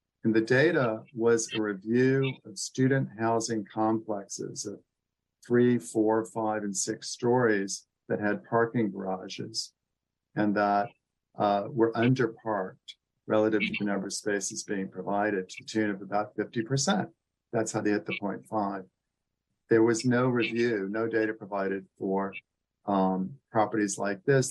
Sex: male